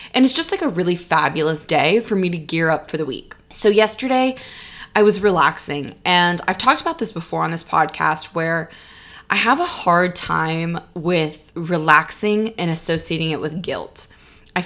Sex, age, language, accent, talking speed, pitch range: female, 20-39, English, American, 180 wpm, 160-195 Hz